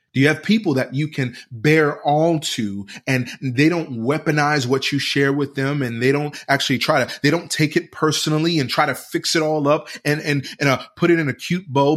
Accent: American